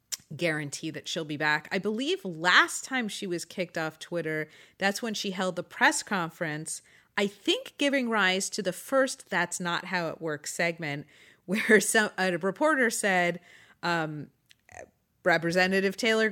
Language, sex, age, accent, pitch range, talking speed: English, female, 30-49, American, 155-205 Hz, 155 wpm